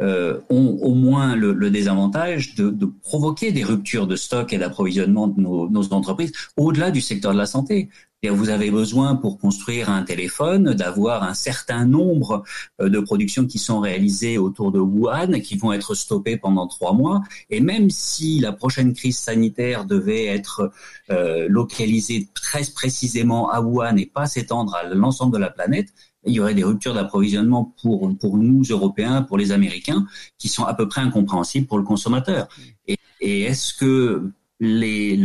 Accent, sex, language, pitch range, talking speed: French, male, French, 100-130 Hz, 175 wpm